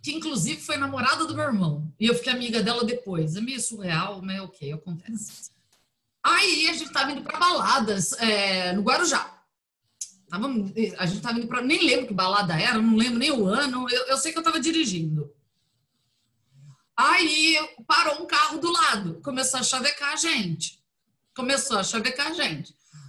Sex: female